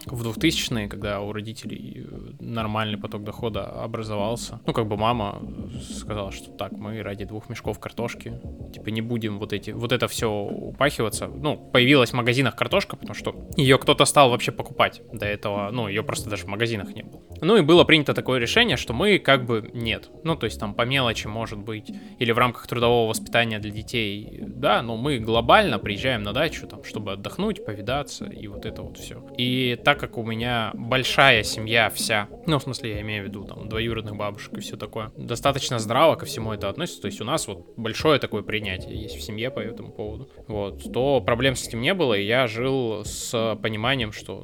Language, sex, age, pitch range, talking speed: Russian, male, 20-39, 105-120 Hz, 200 wpm